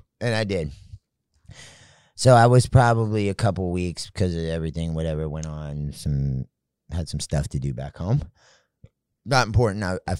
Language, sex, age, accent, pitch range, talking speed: English, male, 30-49, American, 80-100 Hz, 165 wpm